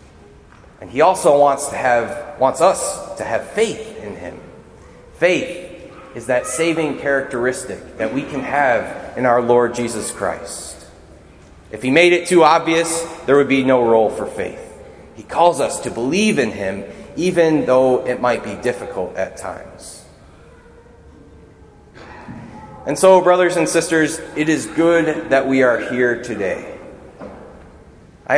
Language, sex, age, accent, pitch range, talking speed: English, male, 30-49, American, 125-170 Hz, 145 wpm